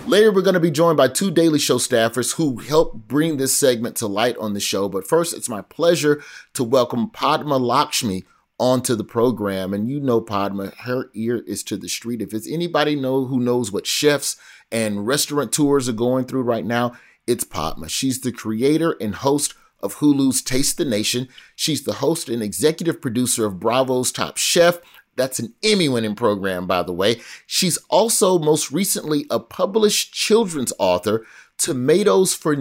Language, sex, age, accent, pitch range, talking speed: English, male, 30-49, American, 115-165 Hz, 180 wpm